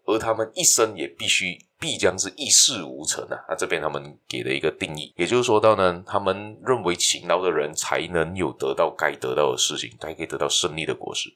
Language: Chinese